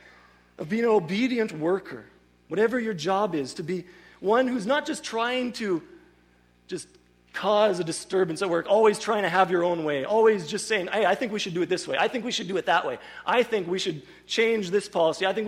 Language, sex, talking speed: English, male, 230 wpm